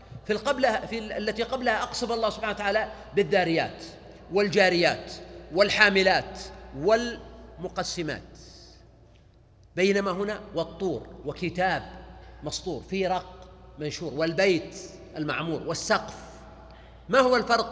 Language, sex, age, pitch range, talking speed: Arabic, male, 40-59, 155-225 Hz, 90 wpm